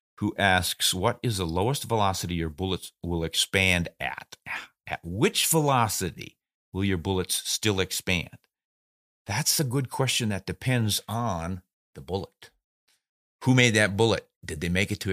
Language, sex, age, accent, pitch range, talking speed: English, male, 50-69, American, 90-115 Hz, 150 wpm